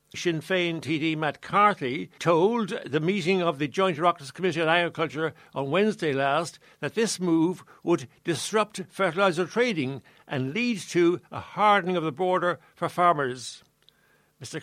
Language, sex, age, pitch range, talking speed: English, male, 60-79, 155-190 Hz, 150 wpm